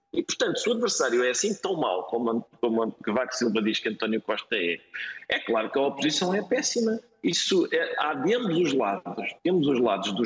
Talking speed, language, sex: 210 wpm, Portuguese, male